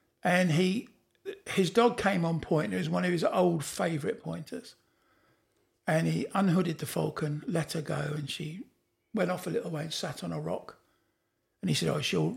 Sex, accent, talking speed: male, British, 195 wpm